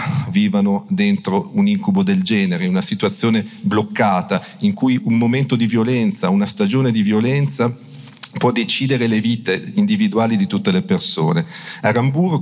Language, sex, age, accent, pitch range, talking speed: Italian, male, 40-59, native, 120-200 Hz, 140 wpm